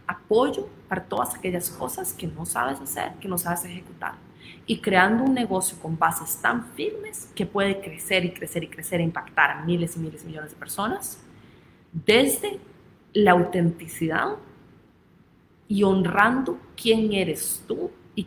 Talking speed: 155 wpm